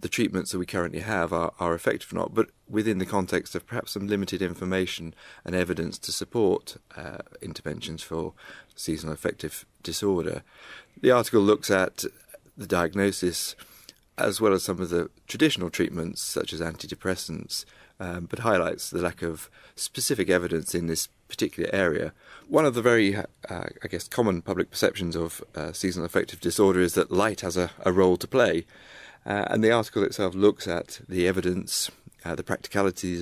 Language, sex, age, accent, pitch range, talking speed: English, male, 30-49, British, 85-100 Hz, 170 wpm